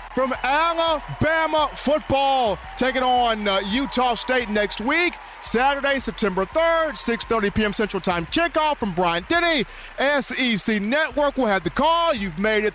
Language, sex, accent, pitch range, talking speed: English, male, American, 190-275 Hz, 140 wpm